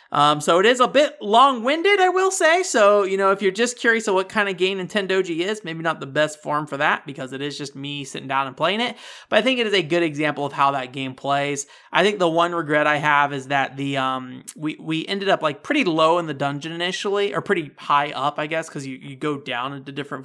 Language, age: English, 30-49